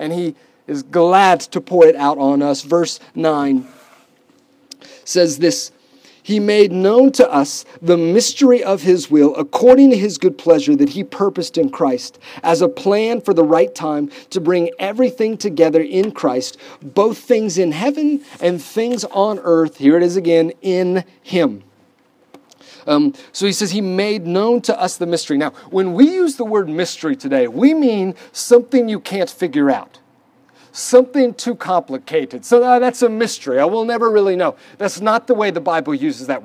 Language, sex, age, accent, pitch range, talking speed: English, male, 40-59, American, 175-255 Hz, 180 wpm